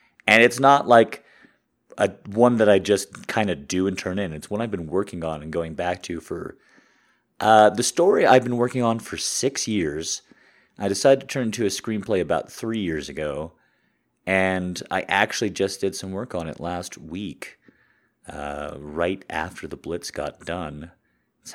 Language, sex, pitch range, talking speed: English, male, 85-120 Hz, 185 wpm